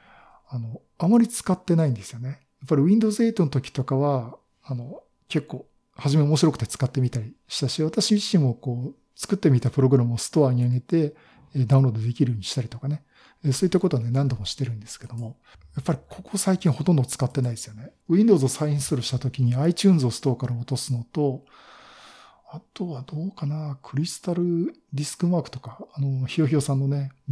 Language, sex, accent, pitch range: Japanese, male, native, 125-160 Hz